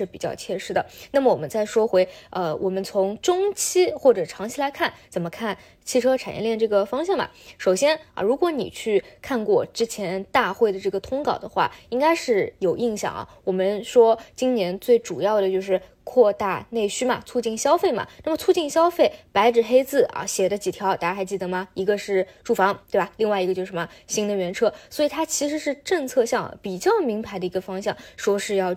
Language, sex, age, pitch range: Chinese, female, 20-39, 200-300 Hz